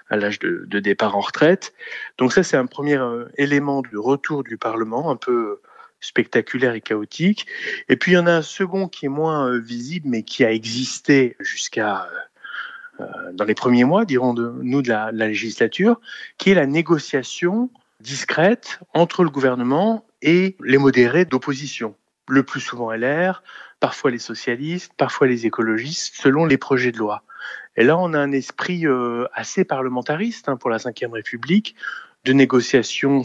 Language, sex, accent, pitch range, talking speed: French, male, French, 125-175 Hz, 170 wpm